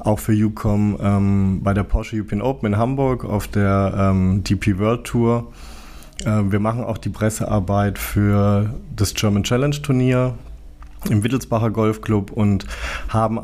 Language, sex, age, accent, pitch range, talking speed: German, male, 20-39, German, 100-110 Hz, 145 wpm